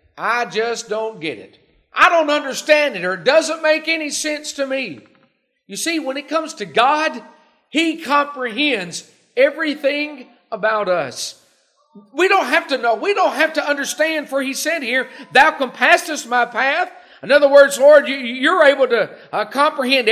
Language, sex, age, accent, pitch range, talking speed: English, male, 50-69, American, 225-295 Hz, 165 wpm